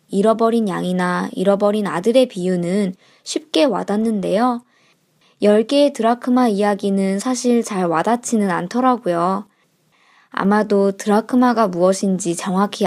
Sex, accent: male, native